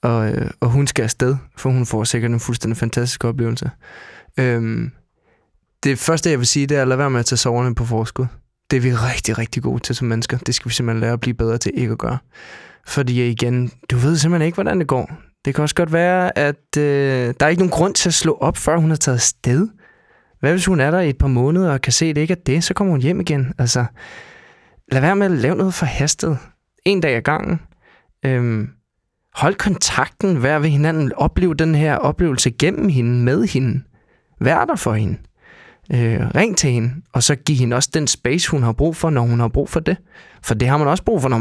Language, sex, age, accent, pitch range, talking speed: Danish, male, 20-39, native, 120-160 Hz, 235 wpm